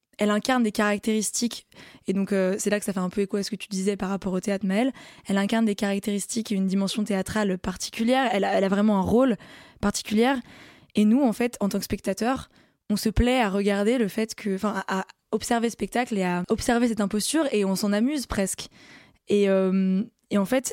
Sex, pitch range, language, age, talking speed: female, 195-230 Hz, French, 20-39, 225 wpm